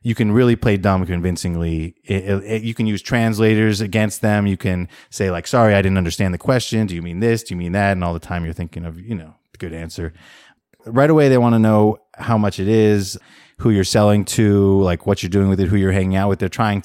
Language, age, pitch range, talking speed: English, 30-49, 90-115 Hz, 255 wpm